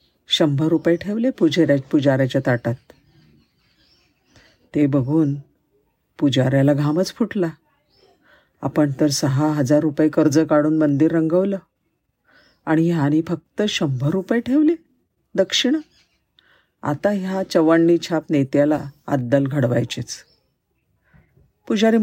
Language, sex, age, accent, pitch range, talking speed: Marathi, female, 50-69, native, 145-180 Hz, 95 wpm